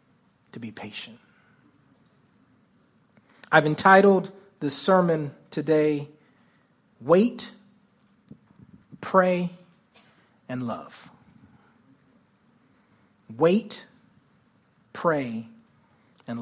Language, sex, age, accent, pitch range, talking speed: English, male, 40-59, American, 150-200 Hz, 55 wpm